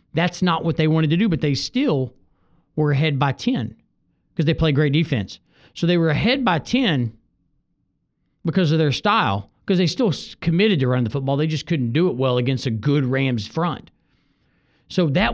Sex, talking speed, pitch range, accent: male, 195 wpm, 140-180 Hz, American